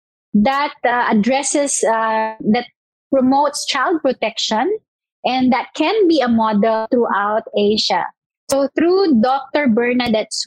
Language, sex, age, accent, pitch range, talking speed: English, female, 20-39, Filipino, 220-275 Hz, 115 wpm